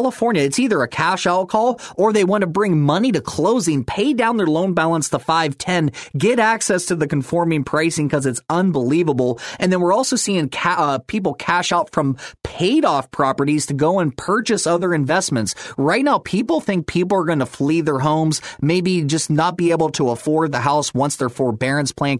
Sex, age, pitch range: male, 30-49, 145-190 Hz